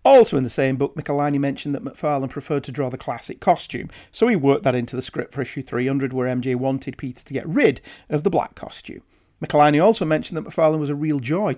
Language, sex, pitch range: English, male, 125-160 Hz